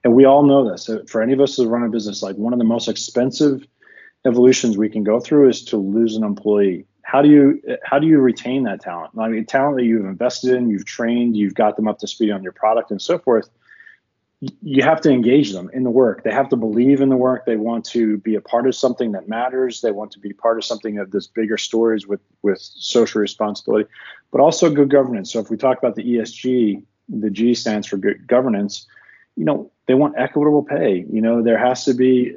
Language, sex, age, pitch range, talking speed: English, male, 30-49, 105-130 Hz, 235 wpm